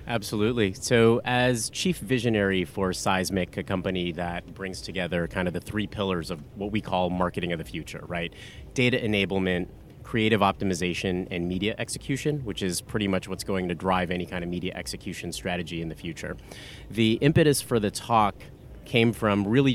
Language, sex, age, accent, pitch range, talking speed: English, male, 30-49, American, 95-110 Hz, 175 wpm